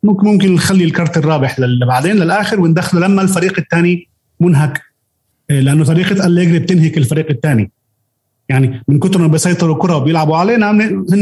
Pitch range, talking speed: 125-170 Hz, 145 wpm